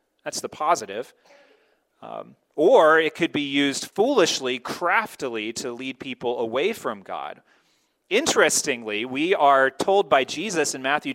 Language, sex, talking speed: English, male, 135 wpm